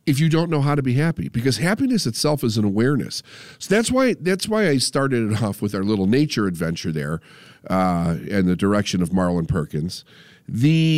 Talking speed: 200 wpm